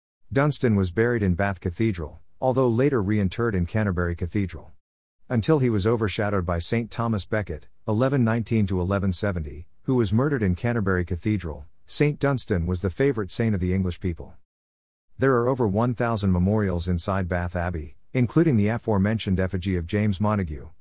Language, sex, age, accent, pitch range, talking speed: English, male, 50-69, American, 90-115 Hz, 150 wpm